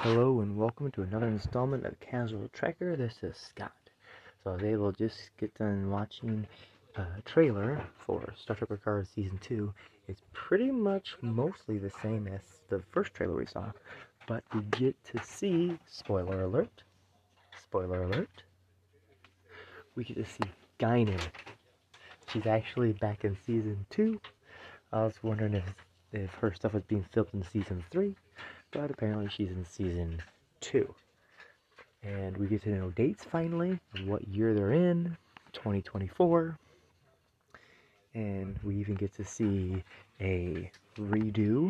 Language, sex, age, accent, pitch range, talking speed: English, male, 20-39, American, 95-115 Hz, 140 wpm